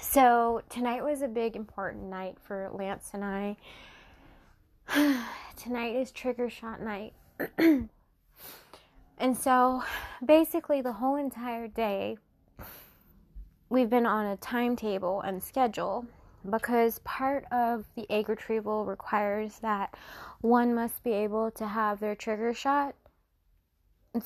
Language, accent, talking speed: English, American, 120 wpm